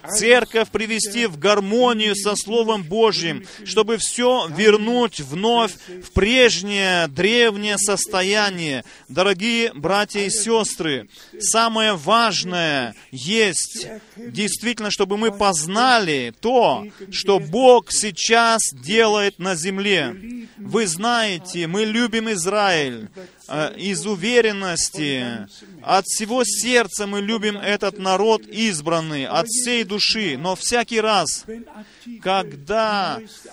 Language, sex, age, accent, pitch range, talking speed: Russian, male, 30-49, native, 185-220 Hz, 100 wpm